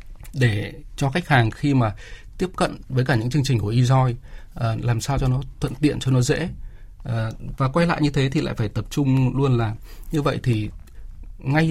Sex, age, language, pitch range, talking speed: male, 20-39, Vietnamese, 110-135 Hz, 205 wpm